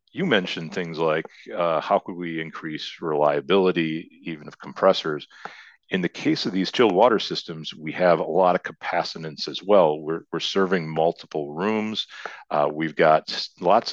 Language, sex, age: English, male, 40-59